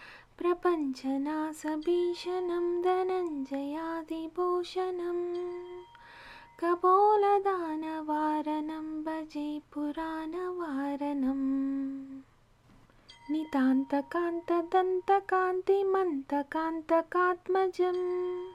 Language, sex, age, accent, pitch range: Telugu, female, 20-39, native, 305-360 Hz